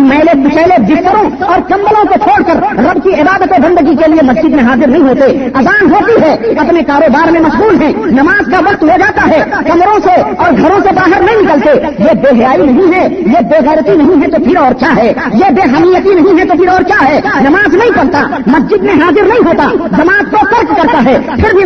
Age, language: 50-69, Urdu